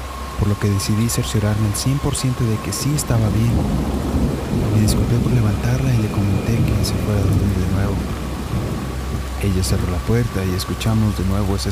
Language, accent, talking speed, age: Spanish, Mexican, 180 wpm, 30-49